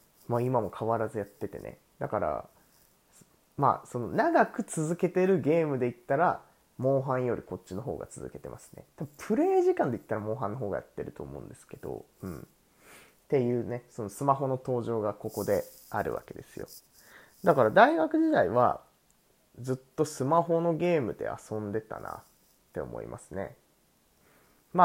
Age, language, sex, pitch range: 20-39, Japanese, male, 115-165 Hz